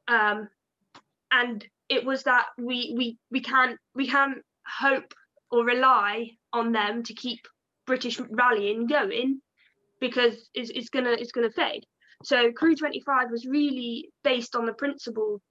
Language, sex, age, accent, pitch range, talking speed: English, female, 20-39, British, 235-305 Hz, 150 wpm